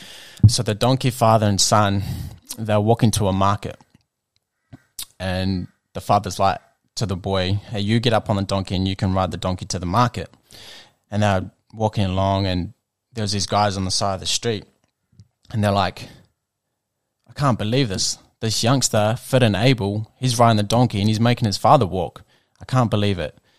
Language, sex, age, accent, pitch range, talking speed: English, male, 20-39, Australian, 95-120 Hz, 190 wpm